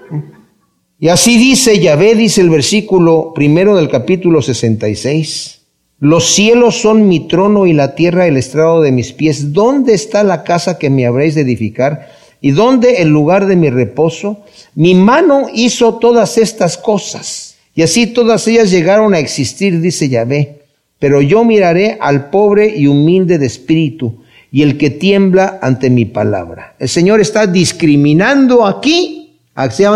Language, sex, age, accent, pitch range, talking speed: Spanish, male, 50-69, Mexican, 145-205 Hz, 155 wpm